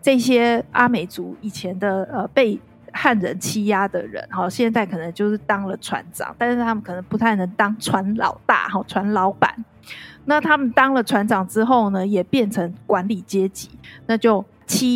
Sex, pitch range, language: female, 195-245 Hz, Chinese